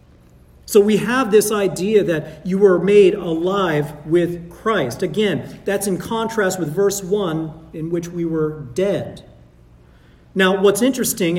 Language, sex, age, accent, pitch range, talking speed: English, male, 40-59, American, 170-215 Hz, 140 wpm